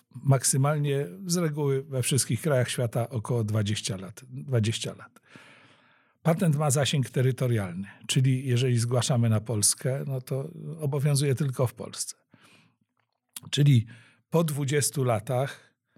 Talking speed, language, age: 110 wpm, Polish, 50-69